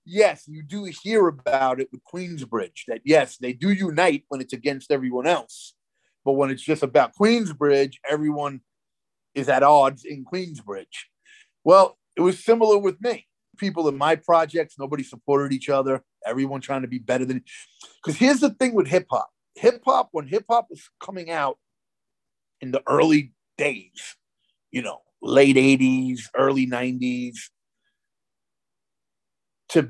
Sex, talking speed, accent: male, 145 wpm, American